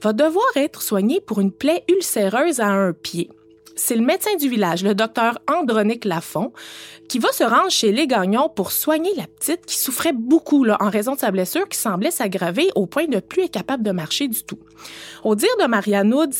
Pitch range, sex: 195-295 Hz, female